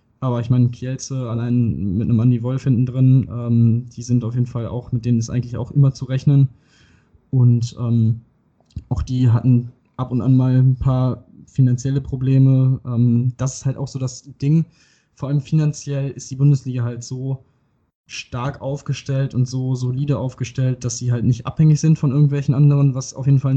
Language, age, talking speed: German, 20-39, 190 wpm